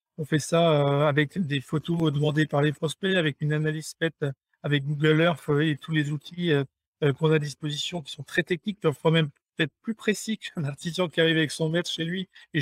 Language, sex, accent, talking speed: French, male, French, 210 wpm